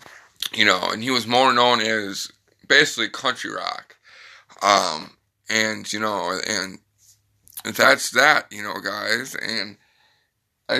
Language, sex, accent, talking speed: English, male, American, 130 wpm